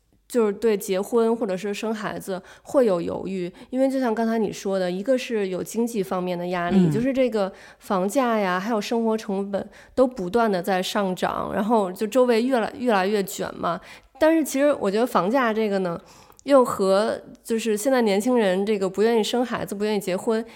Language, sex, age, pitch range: Chinese, female, 20-39, 195-245 Hz